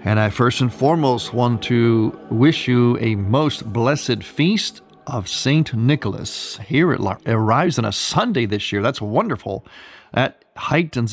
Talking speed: 150 wpm